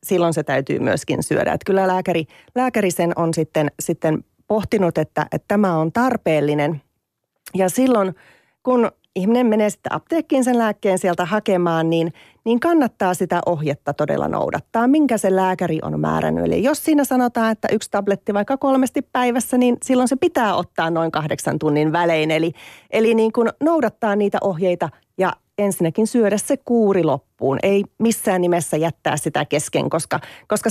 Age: 30-49